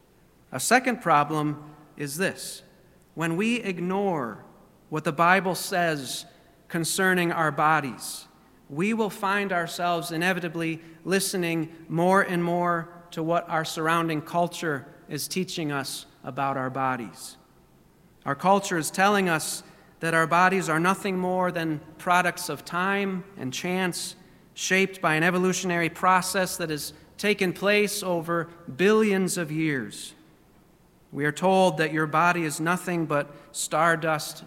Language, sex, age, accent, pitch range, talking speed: English, male, 40-59, American, 155-185 Hz, 130 wpm